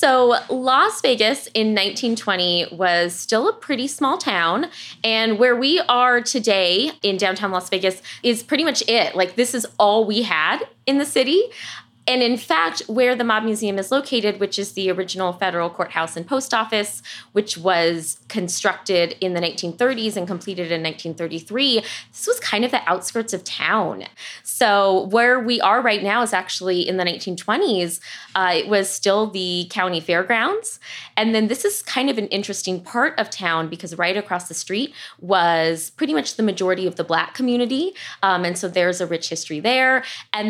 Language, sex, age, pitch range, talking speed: English, female, 20-39, 175-235 Hz, 180 wpm